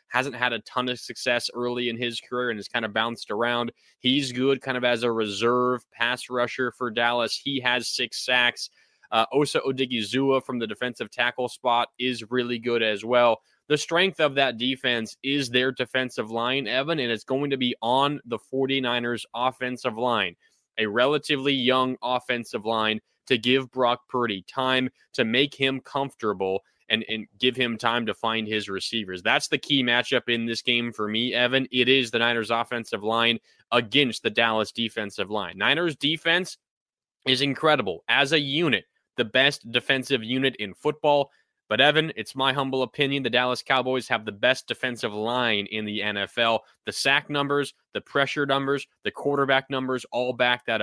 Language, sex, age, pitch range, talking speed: English, male, 20-39, 115-135 Hz, 175 wpm